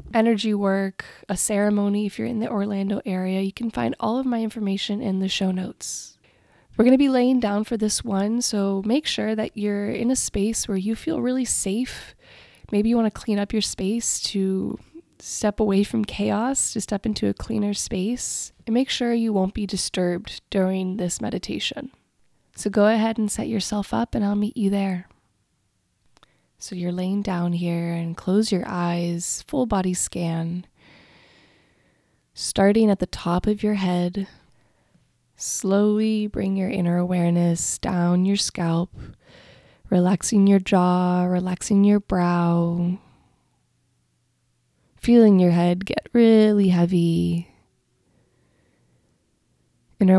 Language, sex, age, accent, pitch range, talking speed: English, female, 20-39, American, 180-215 Hz, 150 wpm